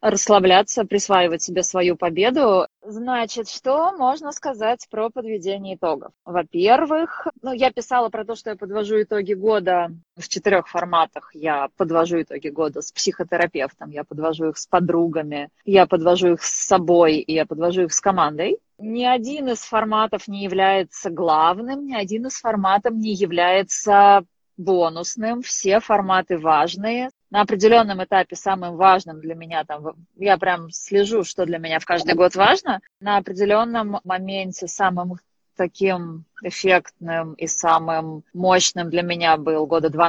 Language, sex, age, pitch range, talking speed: Russian, female, 20-39, 165-205 Hz, 145 wpm